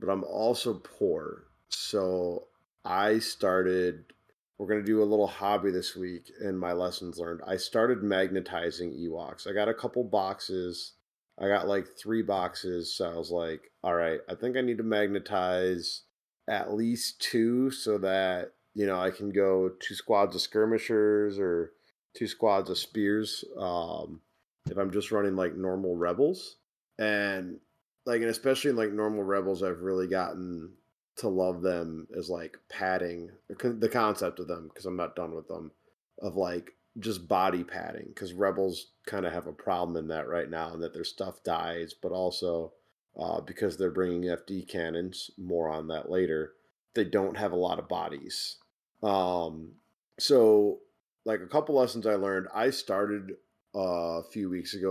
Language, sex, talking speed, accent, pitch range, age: English, male, 170 wpm, American, 90-105 Hz, 30-49